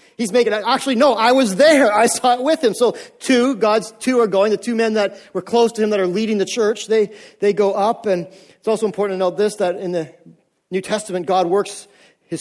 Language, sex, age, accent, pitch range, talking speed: English, male, 40-59, American, 190-220 Hz, 240 wpm